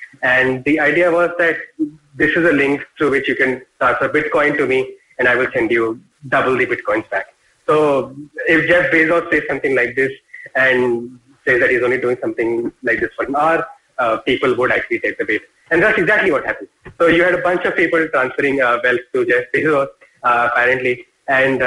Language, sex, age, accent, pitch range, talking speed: English, male, 30-49, Indian, 140-195 Hz, 200 wpm